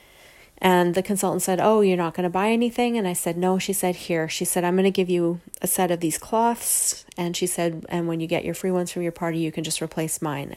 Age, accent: 30-49, American